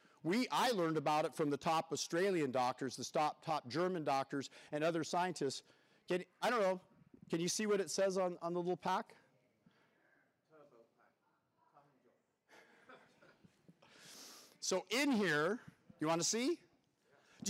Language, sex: English, male